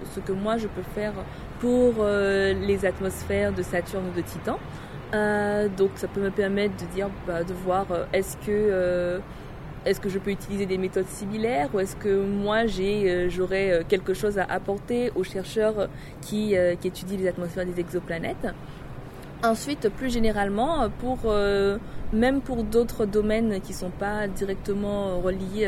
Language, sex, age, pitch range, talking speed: French, female, 20-39, 180-215 Hz, 170 wpm